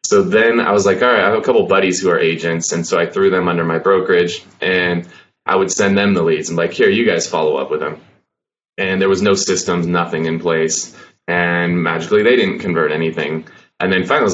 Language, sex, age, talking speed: English, male, 20-39, 240 wpm